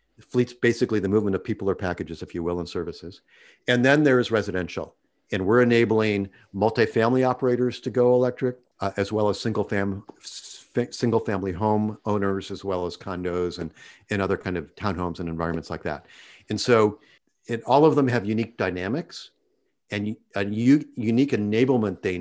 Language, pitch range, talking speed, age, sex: English, 95-120 Hz, 175 wpm, 50-69, male